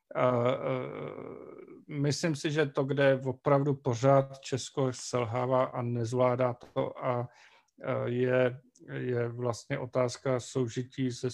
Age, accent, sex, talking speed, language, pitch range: 40-59, native, male, 100 wpm, Czech, 125-140 Hz